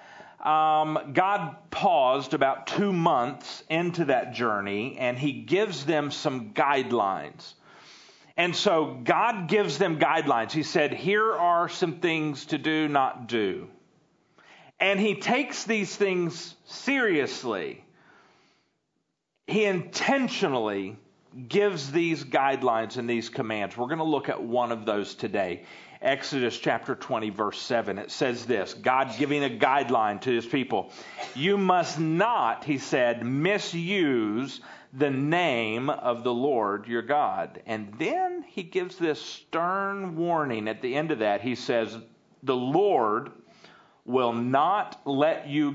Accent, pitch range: American, 125-180 Hz